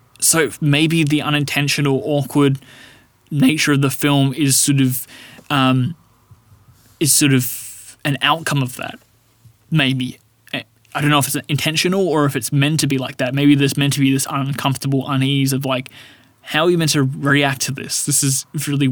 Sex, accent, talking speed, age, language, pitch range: male, Australian, 180 wpm, 20-39, English, 130-145 Hz